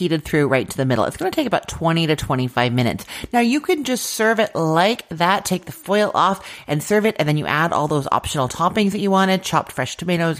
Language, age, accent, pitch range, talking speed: English, 30-49, American, 135-180 Hz, 255 wpm